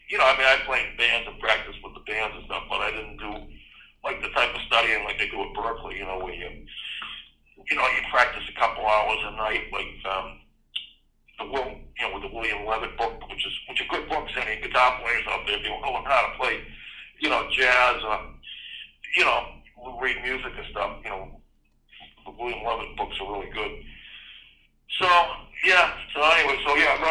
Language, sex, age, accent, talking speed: English, male, 50-69, American, 215 wpm